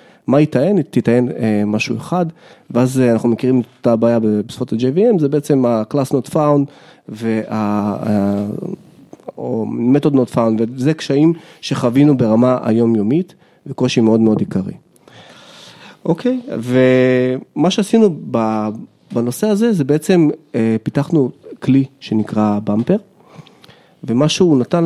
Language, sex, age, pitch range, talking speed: Hebrew, male, 30-49, 115-170 Hz, 115 wpm